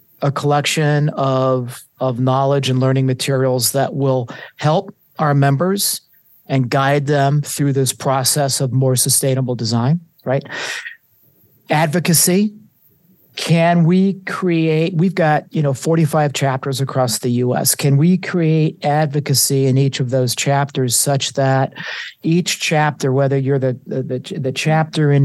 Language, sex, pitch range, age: English, male, 135-155 Hz, 50-69